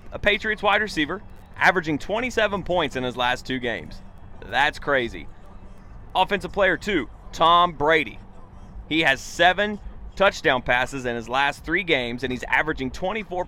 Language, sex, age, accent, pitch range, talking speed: English, male, 30-49, American, 105-170 Hz, 145 wpm